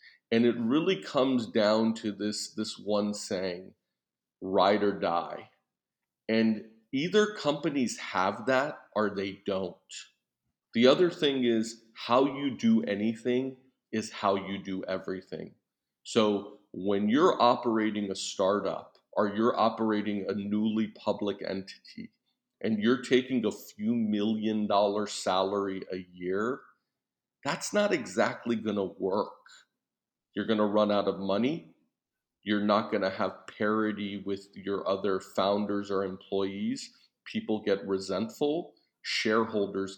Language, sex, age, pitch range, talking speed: Hebrew, male, 40-59, 100-115 Hz, 130 wpm